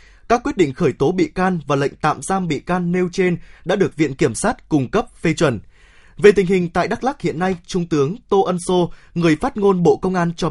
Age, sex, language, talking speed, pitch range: 20-39, male, Vietnamese, 250 wpm, 150-200 Hz